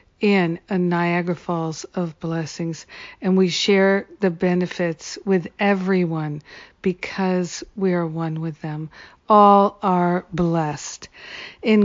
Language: English